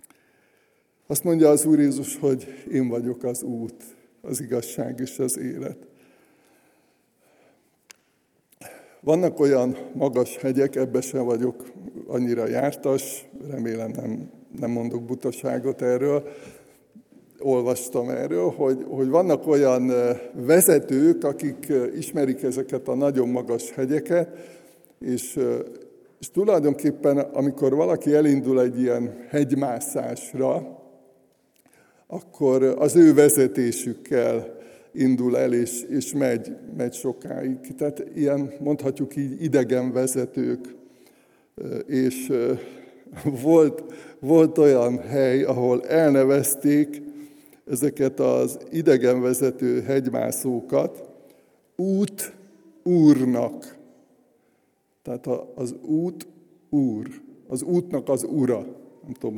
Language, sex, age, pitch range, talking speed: Hungarian, male, 60-79, 125-155 Hz, 90 wpm